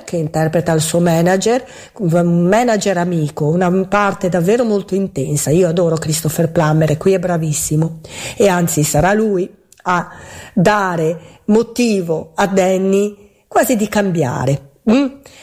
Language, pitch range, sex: Italian, 170-215 Hz, female